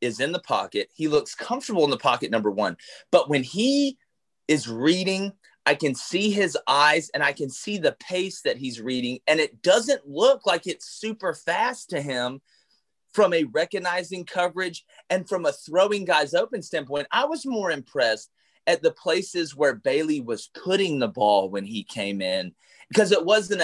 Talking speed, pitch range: 185 wpm, 140-195 Hz